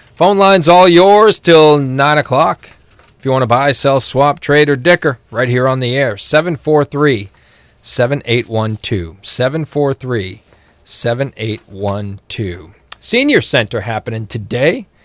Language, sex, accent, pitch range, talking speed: English, male, American, 110-145 Hz, 110 wpm